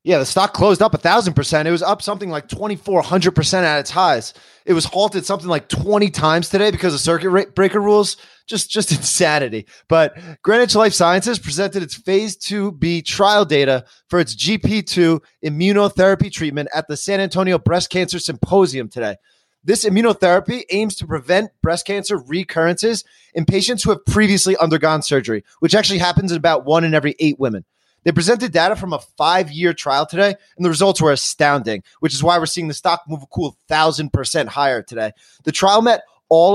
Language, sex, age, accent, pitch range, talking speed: English, male, 30-49, American, 150-195 Hz, 180 wpm